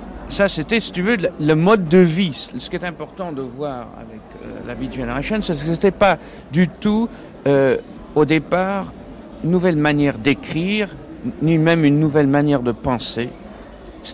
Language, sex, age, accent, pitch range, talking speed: French, male, 50-69, French, 130-170 Hz, 180 wpm